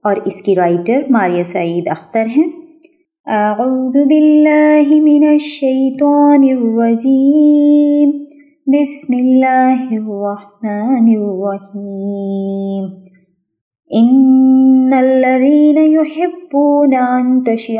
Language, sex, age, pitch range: Urdu, female, 20-39, 195-270 Hz